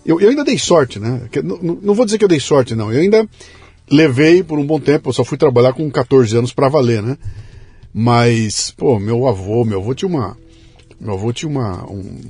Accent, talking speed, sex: Brazilian, 225 wpm, male